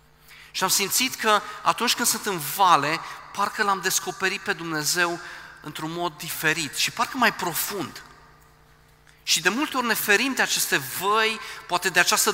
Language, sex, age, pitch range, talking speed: Romanian, male, 40-59, 150-205 Hz, 160 wpm